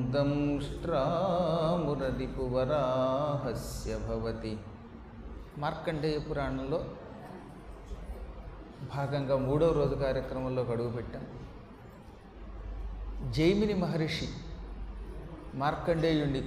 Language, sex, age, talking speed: Telugu, male, 30-49, 45 wpm